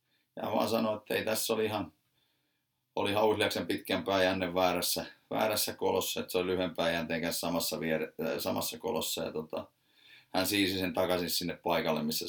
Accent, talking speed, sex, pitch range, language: native, 150 wpm, male, 90-115 Hz, Finnish